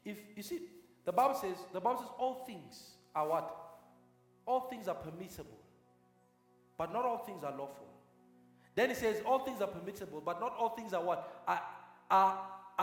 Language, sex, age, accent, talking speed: English, male, 50-69, South African, 180 wpm